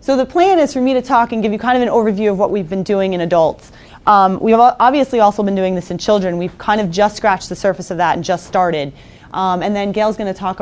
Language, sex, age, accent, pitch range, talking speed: English, female, 30-49, American, 170-215 Hz, 285 wpm